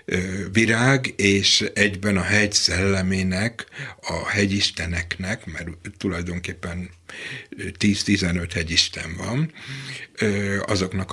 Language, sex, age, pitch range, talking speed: Hungarian, male, 60-79, 90-105 Hz, 75 wpm